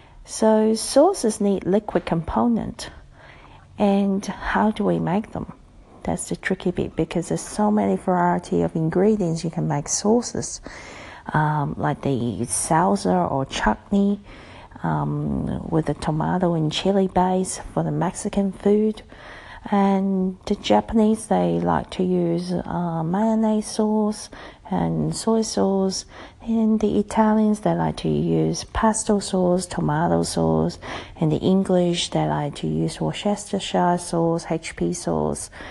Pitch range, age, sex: 155-215 Hz, 50-69, female